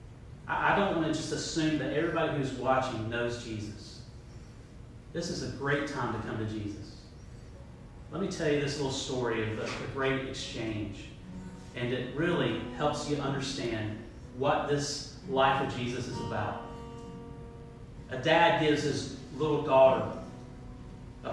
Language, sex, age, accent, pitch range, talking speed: English, male, 40-59, American, 120-145 Hz, 150 wpm